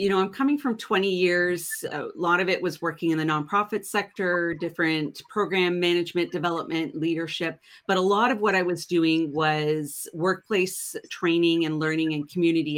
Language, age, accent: English, 40-59, American